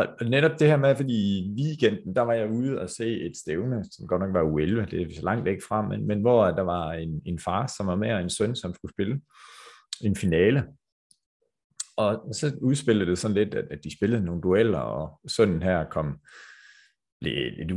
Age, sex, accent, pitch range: 30-49, male, native, 90-125 Hz